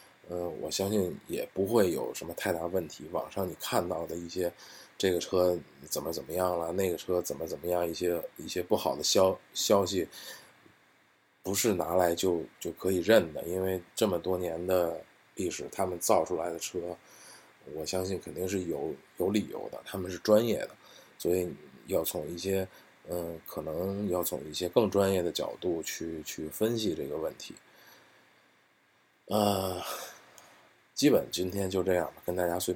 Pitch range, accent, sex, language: 85-95 Hz, native, male, Chinese